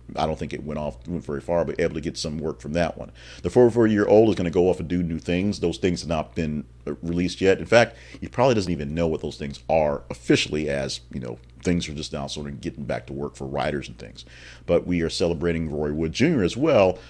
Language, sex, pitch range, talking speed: English, male, 70-95 Hz, 265 wpm